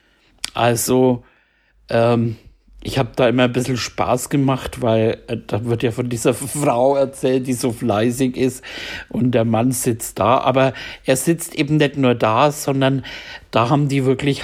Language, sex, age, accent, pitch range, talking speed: German, male, 60-79, German, 120-140 Hz, 165 wpm